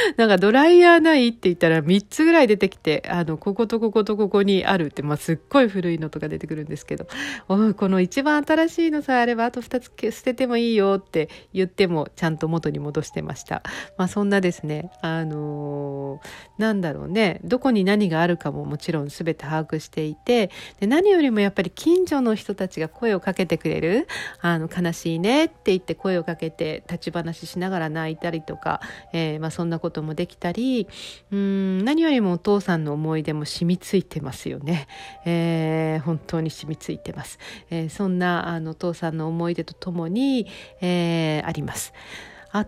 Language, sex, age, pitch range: Japanese, female, 40-59, 160-230 Hz